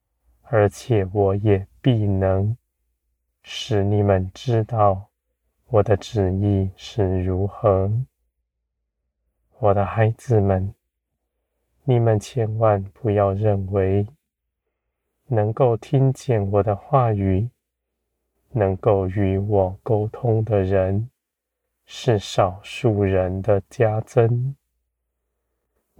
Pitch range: 75-110 Hz